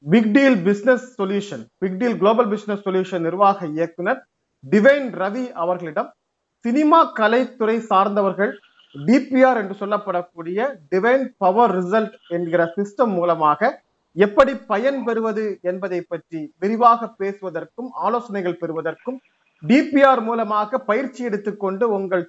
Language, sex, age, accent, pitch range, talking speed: Tamil, male, 30-49, native, 195-245 Hz, 80 wpm